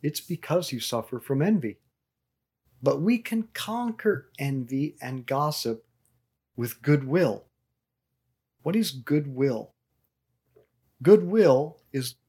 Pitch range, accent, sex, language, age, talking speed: 125-170 Hz, American, male, English, 40-59, 100 wpm